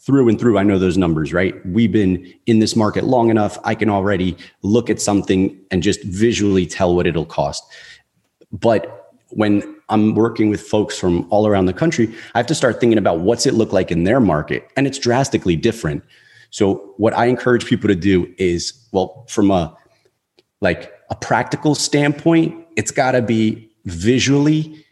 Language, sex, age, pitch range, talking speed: English, male, 30-49, 95-125 Hz, 180 wpm